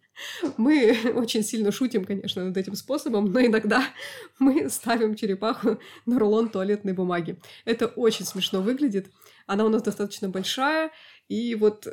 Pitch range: 205-245 Hz